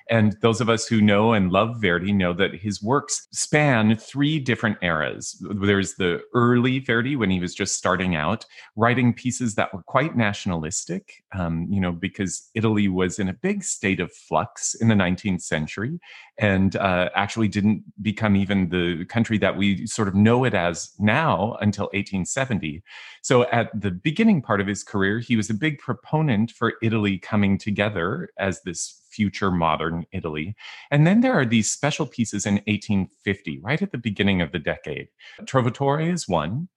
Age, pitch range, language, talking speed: 30-49, 95-120 Hz, English, 175 wpm